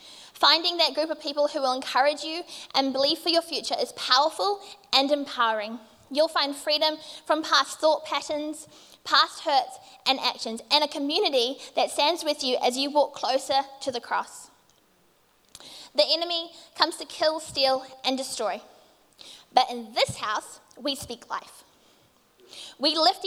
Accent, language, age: Australian, English, 20-39